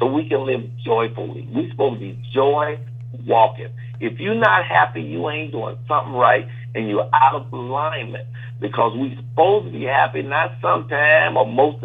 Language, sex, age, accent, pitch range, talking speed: English, male, 60-79, American, 120-130 Hz, 175 wpm